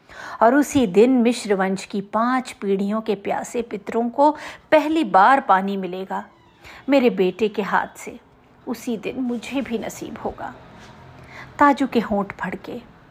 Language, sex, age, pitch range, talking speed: Hindi, female, 50-69, 190-275 Hz, 140 wpm